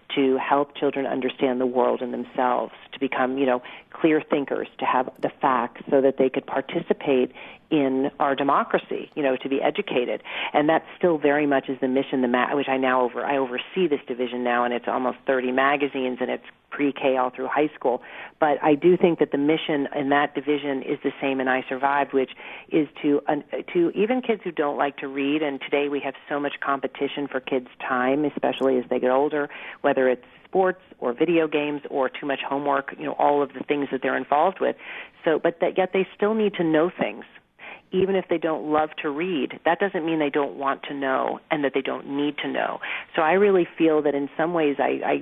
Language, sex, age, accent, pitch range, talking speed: English, female, 40-59, American, 135-155 Hz, 220 wpm